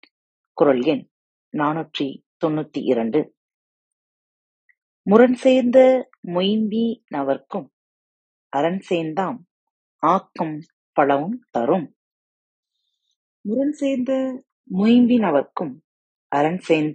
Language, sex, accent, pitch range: Tamil, female, native, 155-250 Hz